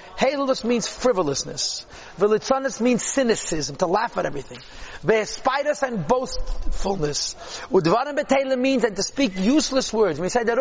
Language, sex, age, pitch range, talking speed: English, male, 40-59, 205-275 Hz, 140 wpm